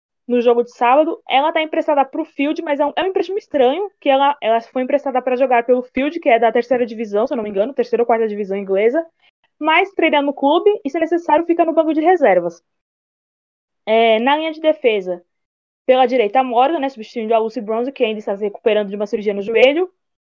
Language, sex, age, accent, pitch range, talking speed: Portuguese, female, 20-39, Brazilian, 230-300 Hz, 225 wpm